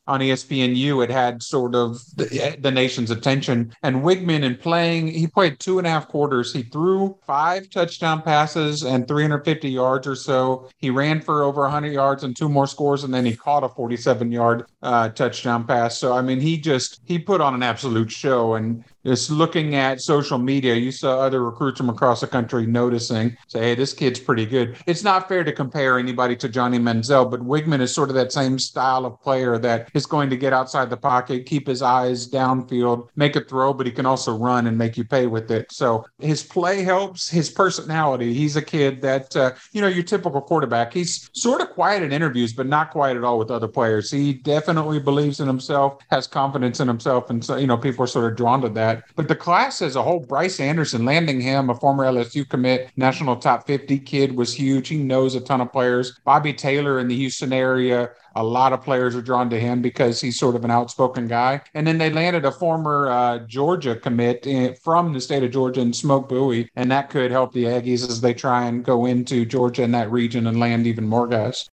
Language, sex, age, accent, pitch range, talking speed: English, male, 50-69, American, 125-145 Hz, 220 wpm